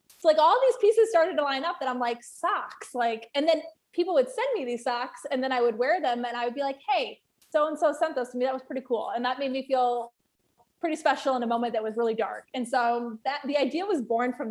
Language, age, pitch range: English, 20-39, 230-270 Hz